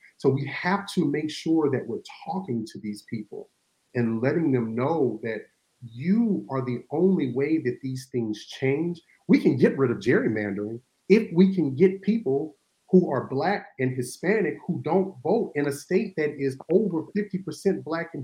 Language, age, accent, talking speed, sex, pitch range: English, 40-59, American, 180 wpm, male, 130-175 Hz